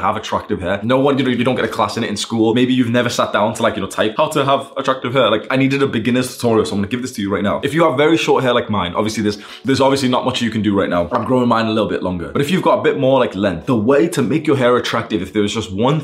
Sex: male